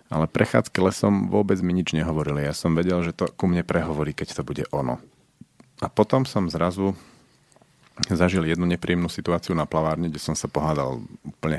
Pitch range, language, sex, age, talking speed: 75-100 Hz, Slovak, male, 40-59, 175 wpm